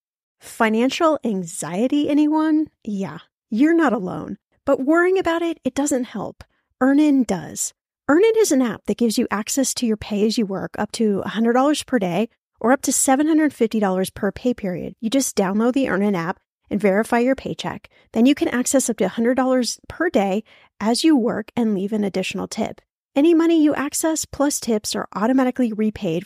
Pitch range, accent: 205-280 Hz, American